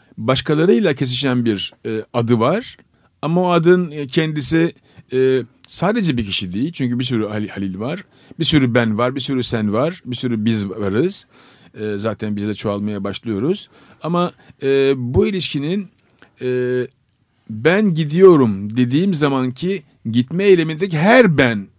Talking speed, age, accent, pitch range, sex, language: 145 wpm, 50-69, native, 110-150 Hz, male, Turkish